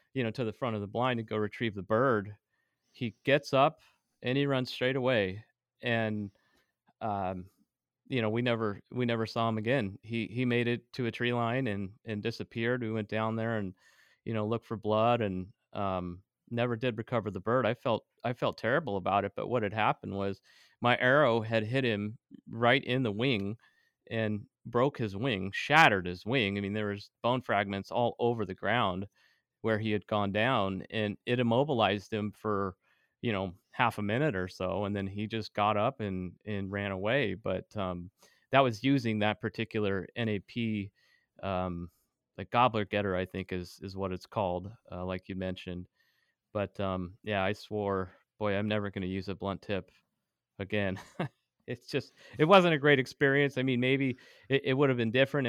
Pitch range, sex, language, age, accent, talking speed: 100-120 Hz, male, English, 30-49, American, 195 wpm